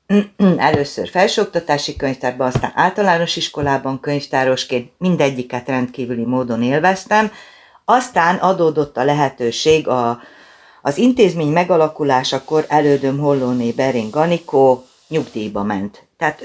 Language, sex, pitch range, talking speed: Hungarian, female, 130-155 Hz, 90 wpm